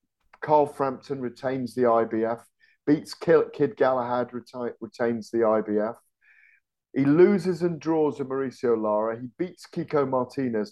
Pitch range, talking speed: 120-160 Hz, 135 wpm